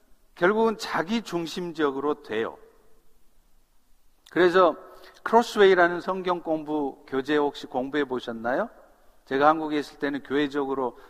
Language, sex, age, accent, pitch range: Korean, male, 50-69, native, 140-215 Hz